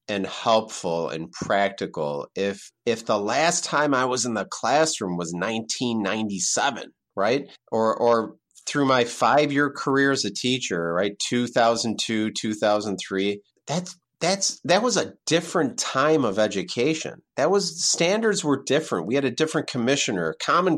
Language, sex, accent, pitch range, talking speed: English, male, American, 105-145 Hz, 145 wpm